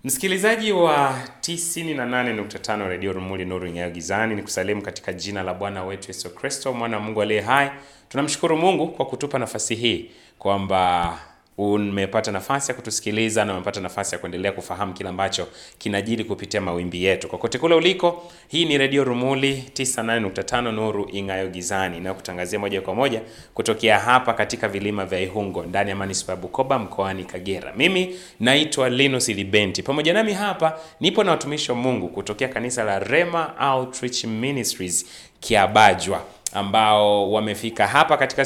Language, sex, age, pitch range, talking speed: Swahili, male, 30-49, 100-135 Hz, 155 wpm